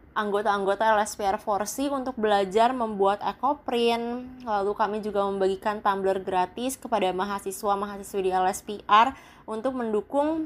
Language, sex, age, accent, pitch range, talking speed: Indonesian, female, 20-39, native, 205-235 Hz, 110 wpm